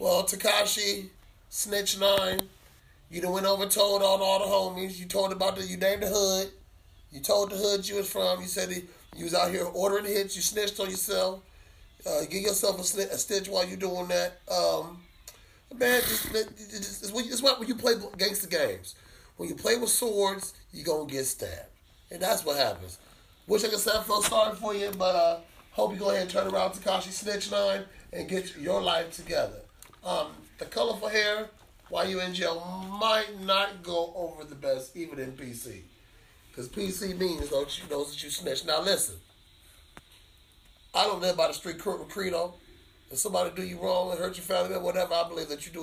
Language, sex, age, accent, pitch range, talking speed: English, male, 30-49, American, 145-200 Hz, 210 wpm